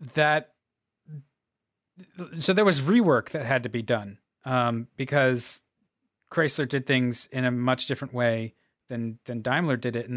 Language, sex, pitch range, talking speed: English, male, 125-150 Hz, 155 wpm